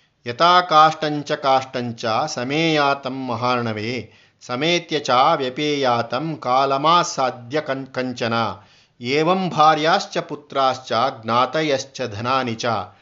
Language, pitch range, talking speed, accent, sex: Kannada, 130-155 Hz, 45 wpm, native, male